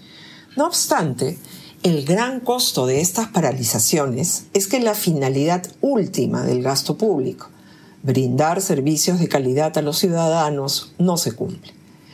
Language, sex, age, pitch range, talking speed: Spanish, female, 50-69, 140-195 Hz, 130 wpm